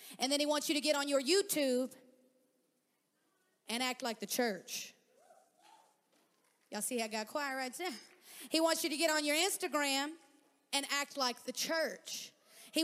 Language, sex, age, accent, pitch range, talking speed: English, female, 30-49, American, 245-345 Hz, 175 wpm